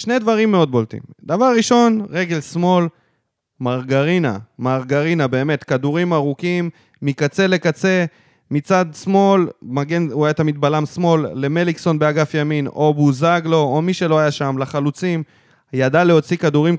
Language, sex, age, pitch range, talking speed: Hebrew, male, 20-39, 145-185 Hz, 130 wpm